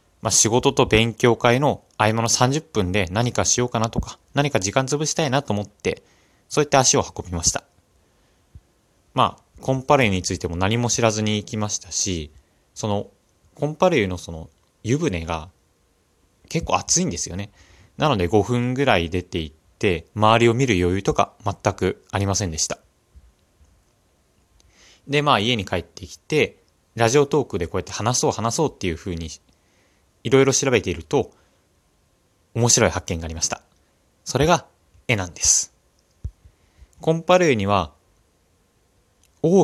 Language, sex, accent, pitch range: Japanese, male, native, 90-135 Hz